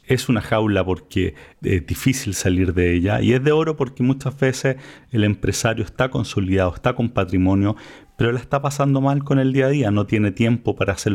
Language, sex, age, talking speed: Spanish, male, 40-59, 205 wpm